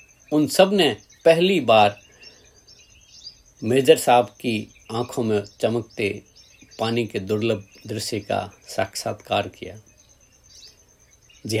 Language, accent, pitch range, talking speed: Hindi, native, 115-165 Hz, 100 wpm